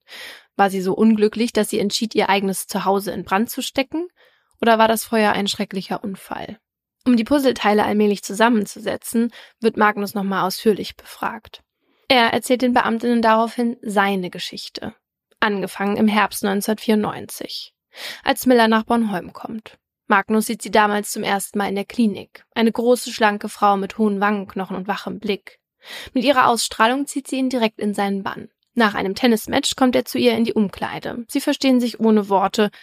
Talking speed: 170 wpm